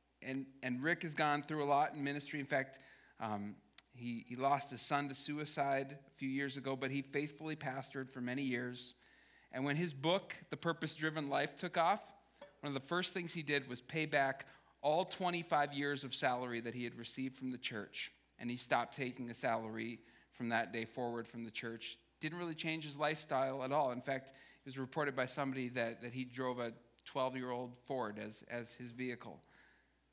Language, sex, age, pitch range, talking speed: English, male, 40-59, 130-170 Hz, 200 wpm